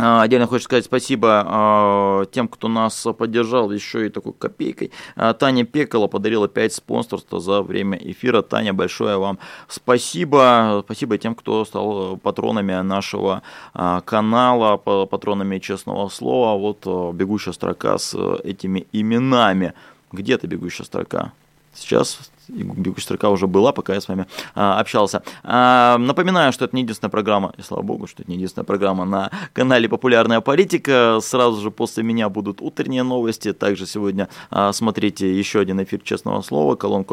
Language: Russian